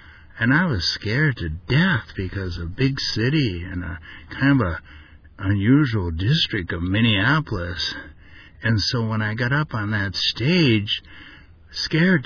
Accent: American